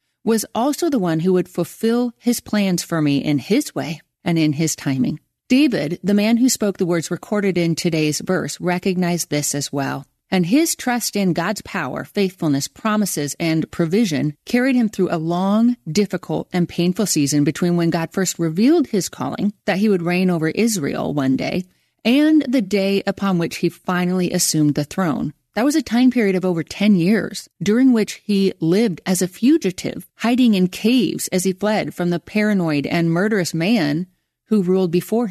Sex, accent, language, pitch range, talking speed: female, American, English, 165-215 Hz, 185 wpm